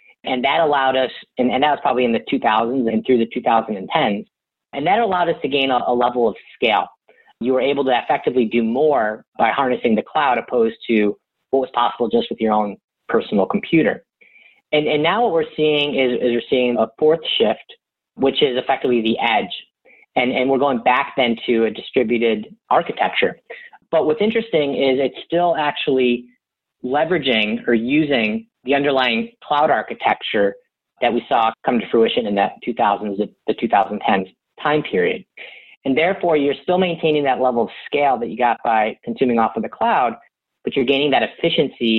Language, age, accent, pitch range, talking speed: English, 30-49, American, 115-155 Hz, 180 wpm